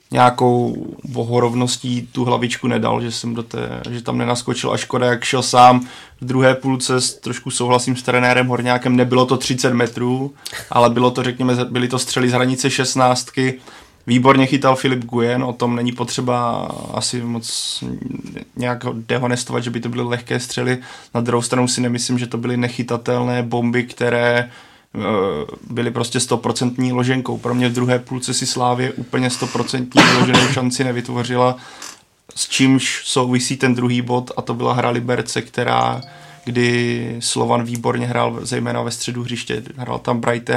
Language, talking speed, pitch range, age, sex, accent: Czech, 160 wpm, 120-125 Hz, 20-39, male, native